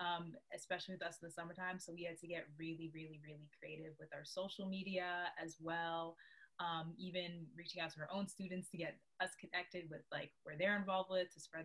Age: 20-39